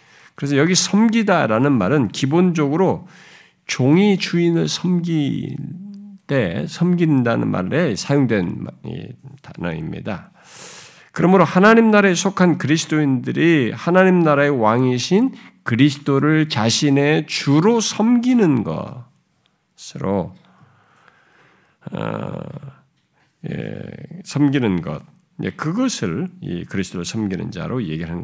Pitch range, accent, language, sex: 110-175 Hz, native, Korean, male